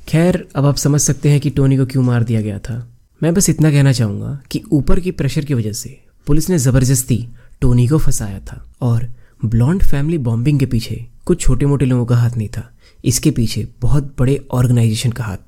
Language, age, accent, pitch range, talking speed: Hindi, 20-39, native, 115-140 Hz, 210 wpm